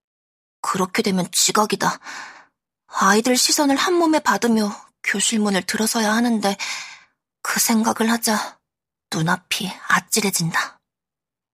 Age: 20-39